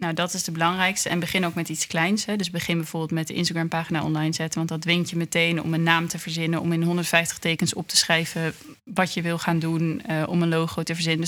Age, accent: 20-39, Dutch